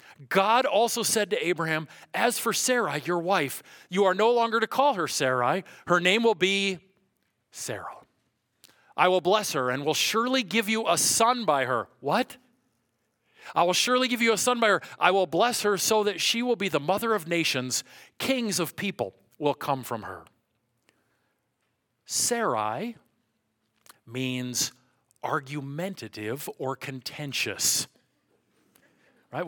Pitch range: 130-215 Hz